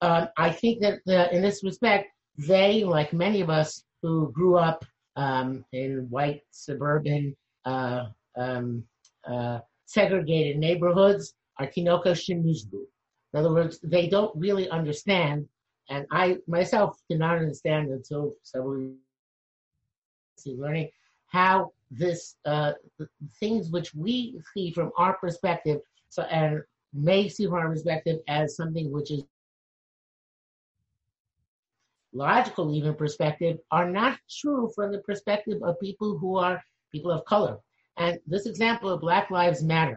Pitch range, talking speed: 150-195 Hz, 135 wpm